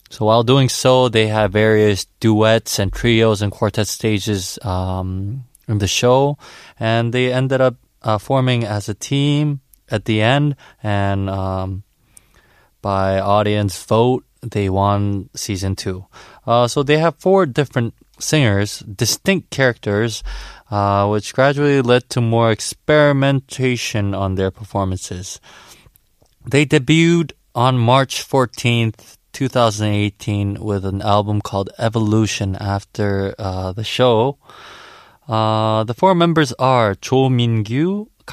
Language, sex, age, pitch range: Korean, male, 20-39, 100-130 Hz